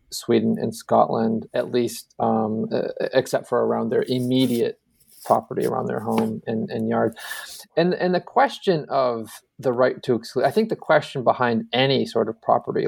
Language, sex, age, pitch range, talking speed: English, male, 30-49, 115-150 Hz, 170 wpm